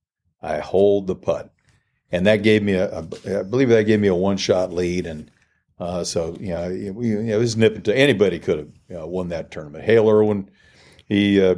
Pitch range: 90-110 Hz